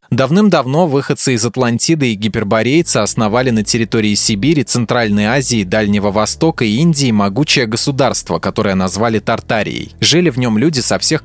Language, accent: Russian, native